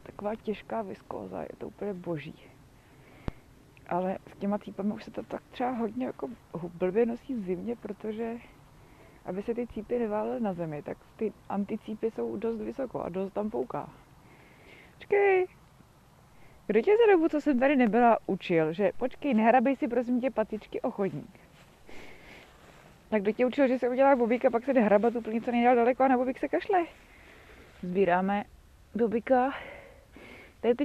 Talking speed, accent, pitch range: 160 wpm, native, 175-245 Hz